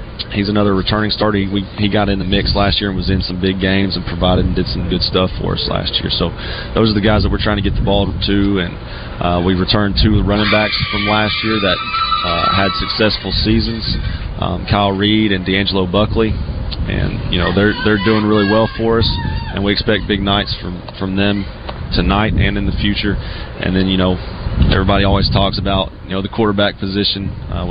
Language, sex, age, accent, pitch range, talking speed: English, male, 30-49, American, 90-105 Hz, 220 wpm